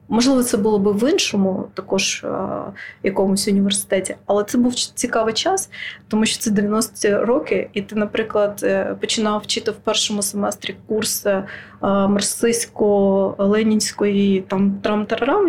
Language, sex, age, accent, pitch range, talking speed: Ukrainian, female, 20-39, native, 200-230 Hz, 120 wpm